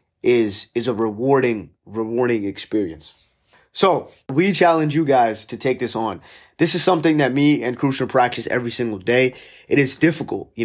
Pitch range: 115-140 Hz